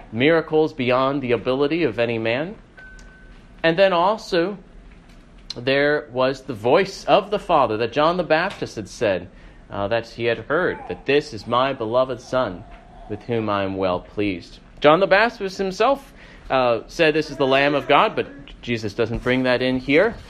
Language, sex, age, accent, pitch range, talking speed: English, male, 30-49, American, 115-155 Hz, 175 wpm